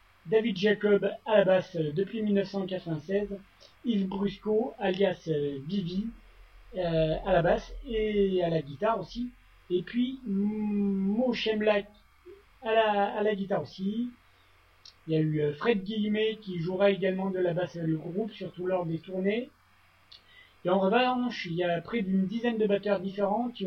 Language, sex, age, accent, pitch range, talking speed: French, male, 40-59, French, 175-215 Hz, 150 wpm